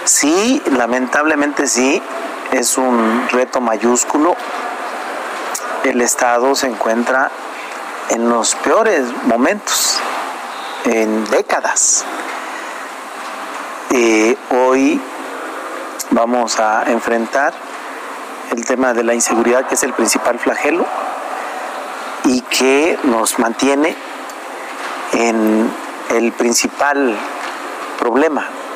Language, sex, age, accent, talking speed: Spanish, male, 40-59, Mexican, 85 wpm